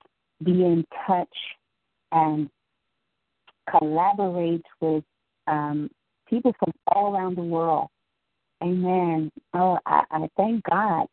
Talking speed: 100 wpm